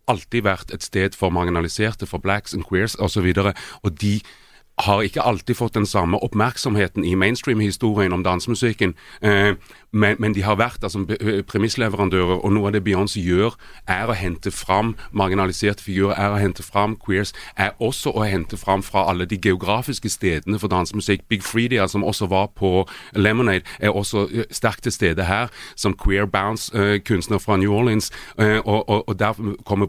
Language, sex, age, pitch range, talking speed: Danish, male, 30-49, 95-110 Hz, 175 wpm